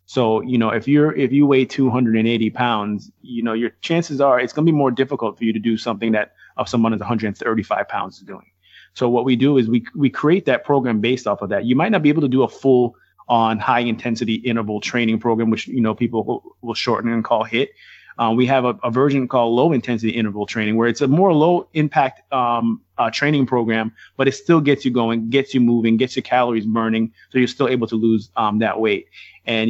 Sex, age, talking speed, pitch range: male, 30-49, 235 wpm, 115-135 Hz